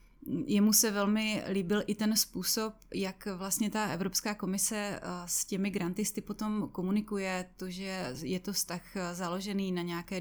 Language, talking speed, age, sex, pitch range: Czech, 145 wpm, 20-39, female, 180-205 Hz